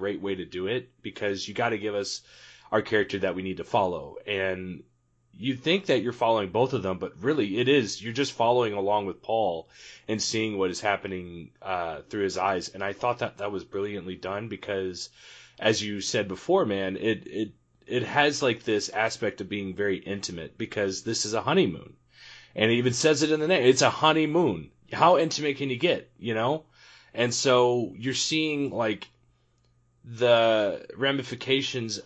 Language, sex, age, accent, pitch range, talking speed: English, male, 30-49, American, 100-135 Hz, 190 wpm